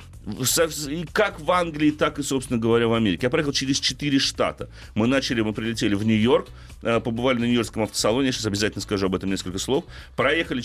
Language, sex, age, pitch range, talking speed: Russian, male, 30-49, 100-135 Hz, 185 wpm